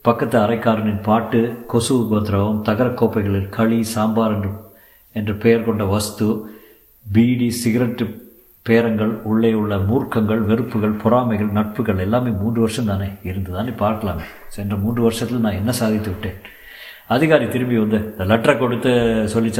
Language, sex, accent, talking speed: Tamil, male, native, 130 wpm